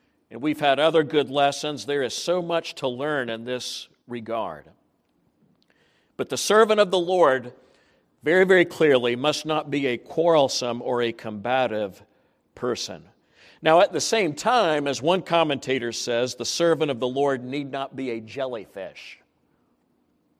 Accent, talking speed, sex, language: American, 155 wpm, male, English